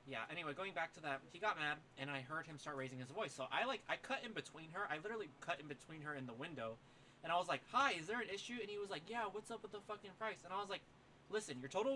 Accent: American